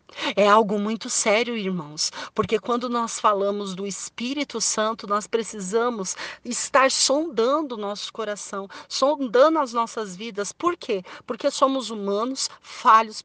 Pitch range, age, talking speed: 200-265 Hz, 40-59, 125 wpm